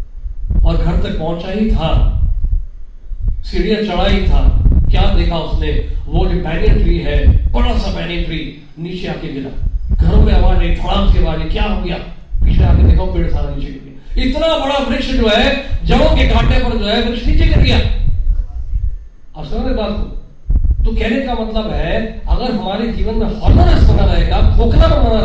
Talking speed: 110 wpm